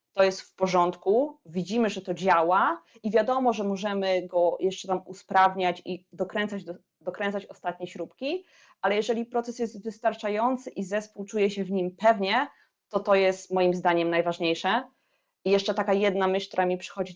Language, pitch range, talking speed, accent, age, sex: Polish, 170-195 Hz, 165 wpm, native, 20-39, female